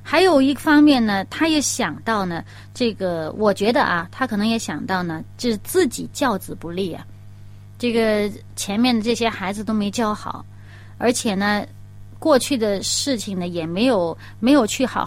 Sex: female